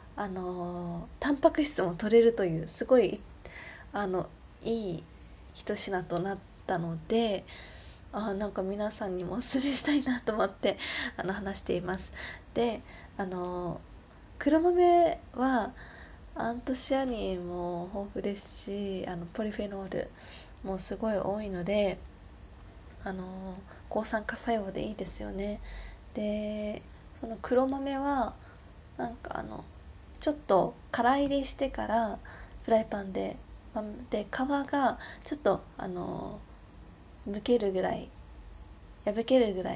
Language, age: Japanese, 20-39